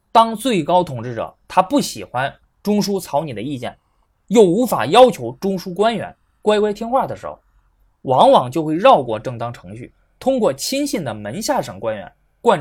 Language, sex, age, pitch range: Chinese, male, 20-39, 130-210 Hz